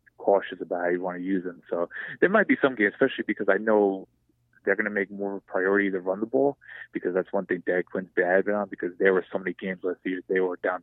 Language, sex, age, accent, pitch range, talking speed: English, male, 20-39, American, 90-105 Hz, 275 wpm